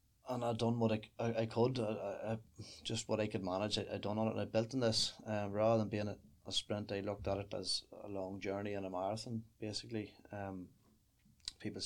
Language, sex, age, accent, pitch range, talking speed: English, male, 20-39, Irish, 100-110 Hz, 230 wpm